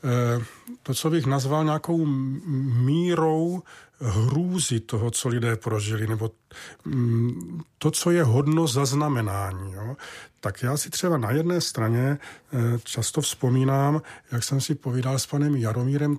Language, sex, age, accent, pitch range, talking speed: Czech, male, 40-59, native, 120-140 Hz, 125 wpm